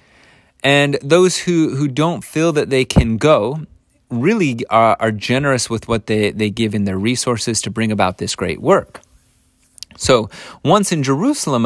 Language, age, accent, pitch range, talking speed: English, 30-49, American, 100-135 Hz, 165 wpm